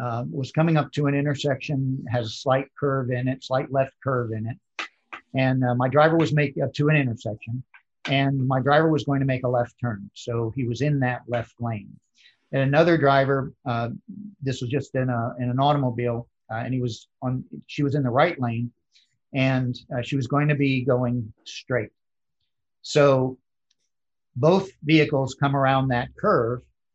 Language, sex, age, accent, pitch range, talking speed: English, male, 50-69, American, 120-145 Hz, 185 wpm